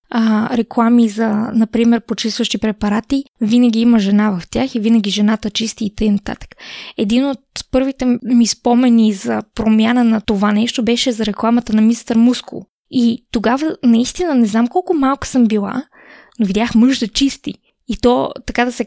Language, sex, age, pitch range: Bulgarian, female, 20-39, 225-255 Hz